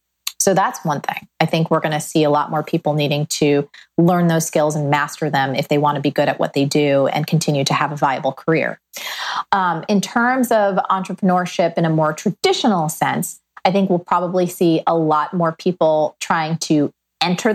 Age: 30-49